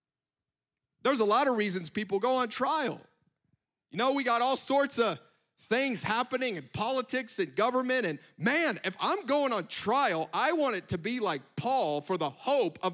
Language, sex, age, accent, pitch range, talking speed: English, male, 30-49, American, 165-250 Hz, 185 wpm